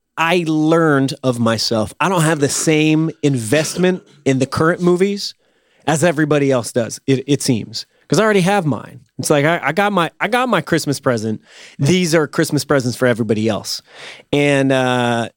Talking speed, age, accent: 180 wpm, 30-49, American